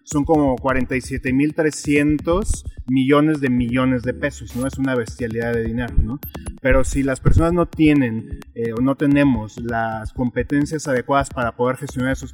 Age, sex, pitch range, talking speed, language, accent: 30-49, male, 120-140 Hz, 155 wpm, Spanish, Mexican